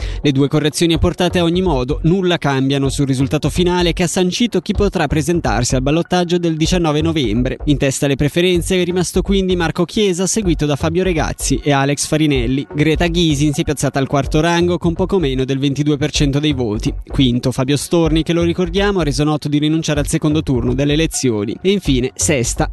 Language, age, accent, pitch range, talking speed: Italian, 20-39, native, 145-180 Hz, 195 wpm